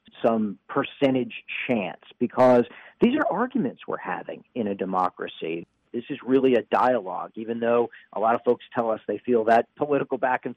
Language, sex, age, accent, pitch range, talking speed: English, male, 50-69, American, 115-170 Hz, 175 wpm